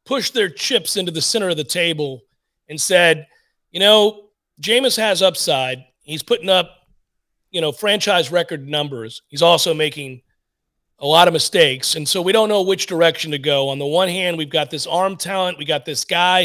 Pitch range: 160-200 Hz